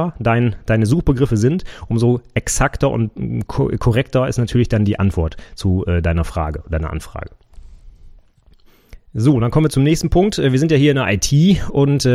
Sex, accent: male, German